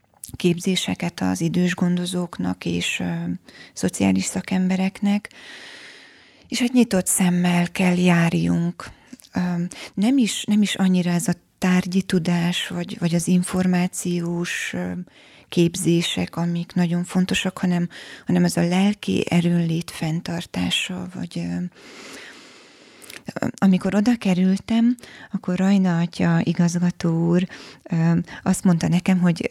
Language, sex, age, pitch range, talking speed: Hungarian, female, 30-49, 170-185 Hz, 100 wpm